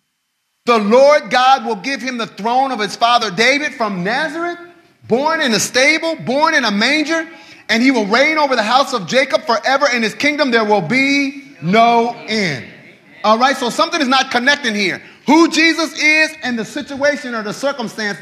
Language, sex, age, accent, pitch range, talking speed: English, male, 30-49, American, 225-290 Hz, 190 wpm